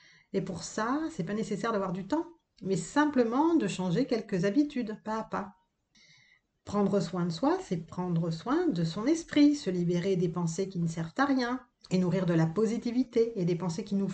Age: 40-59